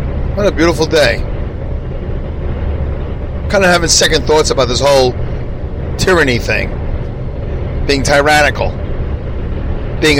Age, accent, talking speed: 40-59, American, 100 wpm